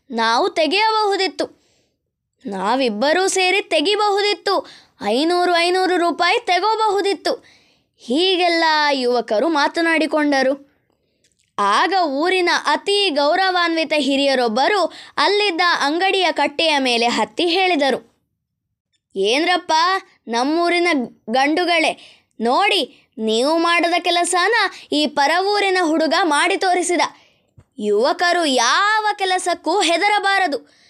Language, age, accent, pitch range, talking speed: Kannada, 20-39, native, 295-385 Hz, 75 wpm